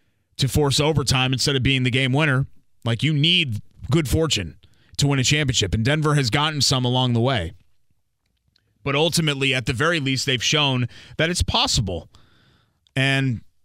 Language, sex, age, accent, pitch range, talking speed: English, male, 30-49, American, 105-140 Hz, 165 wpm